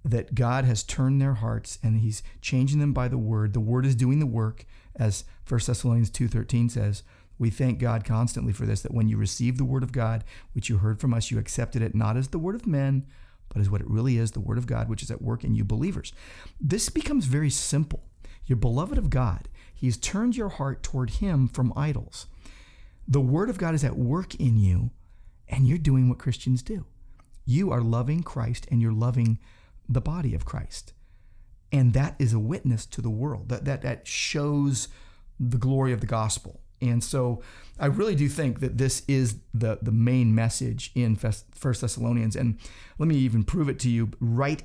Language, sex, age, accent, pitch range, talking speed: English, male, 40-59, American, 110-130 Hz, 205 wpm